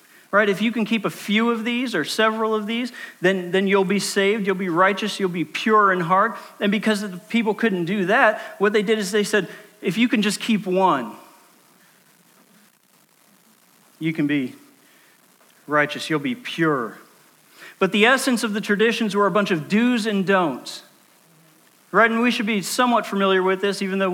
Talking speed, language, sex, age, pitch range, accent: 190 wpm, English, male, 40-59, 175-220 Hz, American